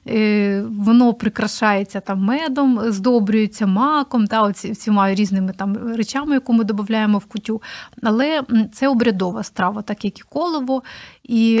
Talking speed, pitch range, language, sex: 135 wpm, 210-250 Hz, Ukrainian, female